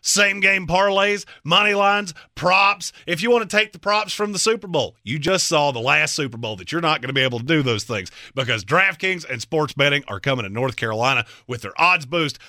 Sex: male